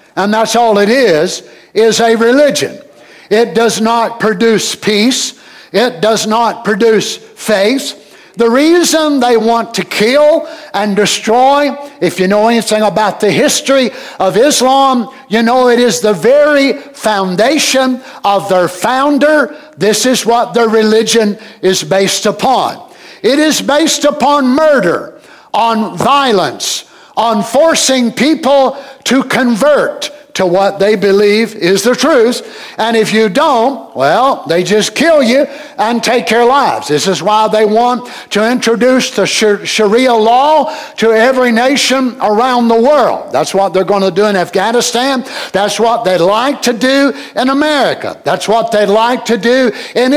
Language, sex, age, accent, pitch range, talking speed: English, male, 60-79, American, 215-275 Hz, 150 wpm